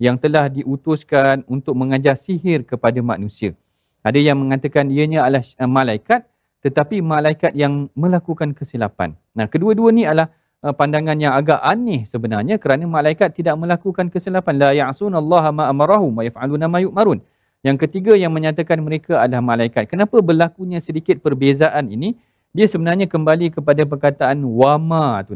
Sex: male